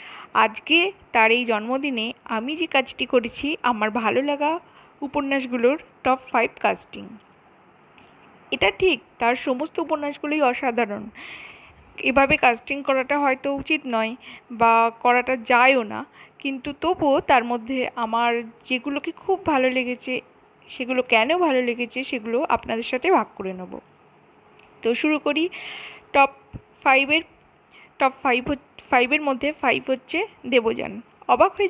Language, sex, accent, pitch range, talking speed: Bengali, female, native, 240-300 Hz, 120 wpm